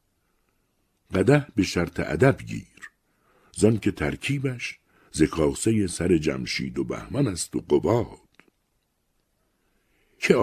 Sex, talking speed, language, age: male, 100 wpm, Persian, 60-79